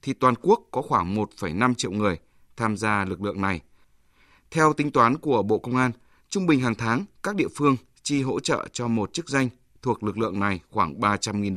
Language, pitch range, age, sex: Vietnamese, 105-130 Hz, 20-39, male